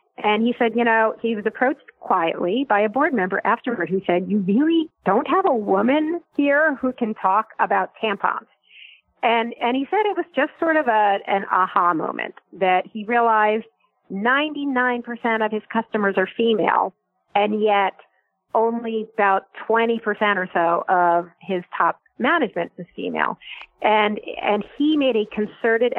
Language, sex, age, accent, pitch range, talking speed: English, female, 40-59, American, 195-245 Hz, 160 wpm